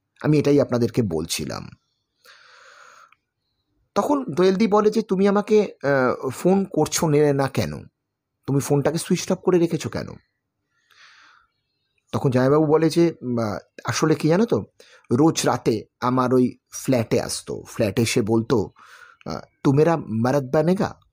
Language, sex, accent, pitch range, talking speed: Bengali, male, native, 125-165 Hz, 85 wpm